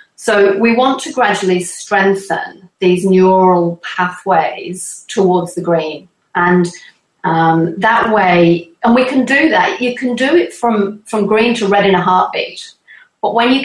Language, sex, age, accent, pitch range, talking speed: English, female, 40-59, British, 180-220 Hz, 160 wpm